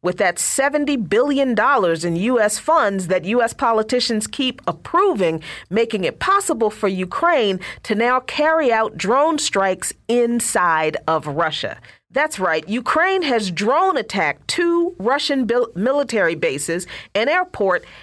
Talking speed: 125 wpm